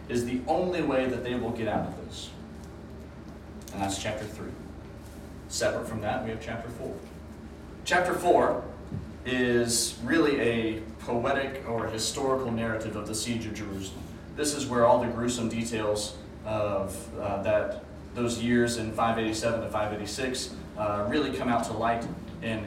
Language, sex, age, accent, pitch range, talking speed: English, male, 30-49, American, 105-130 Hz, 155 wpm